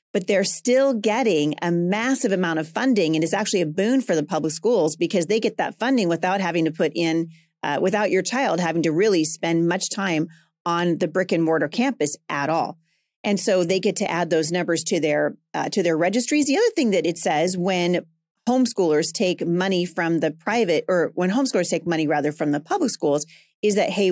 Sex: female